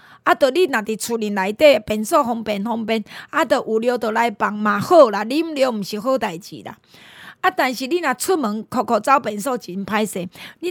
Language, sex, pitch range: Chinese, female, 220-300 Hz